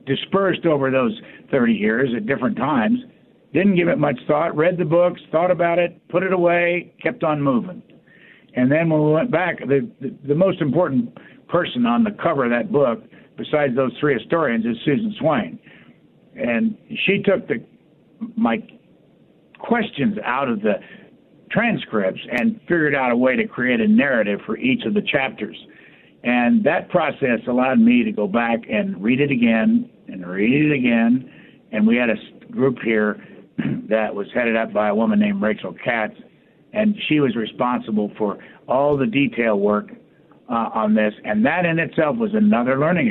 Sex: male